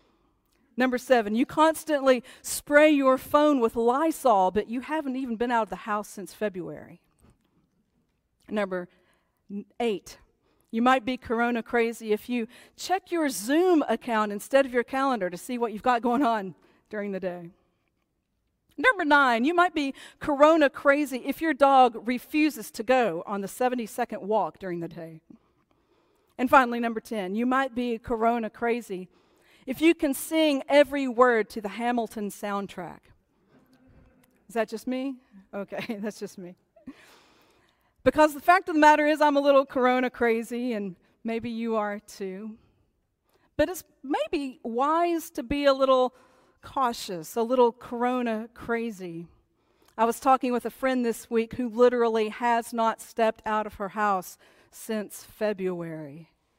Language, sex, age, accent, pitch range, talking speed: English, female, 50-69, American, 210-270 Hz, 150 wpm